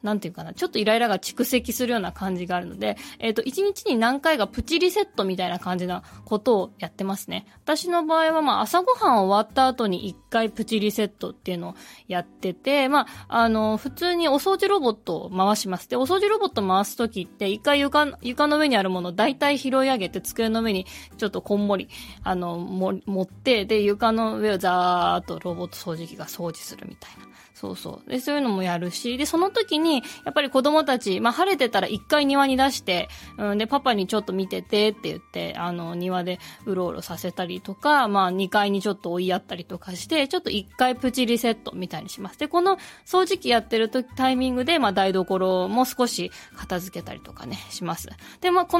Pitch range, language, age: 190-285 Hz, Japanese, 20-39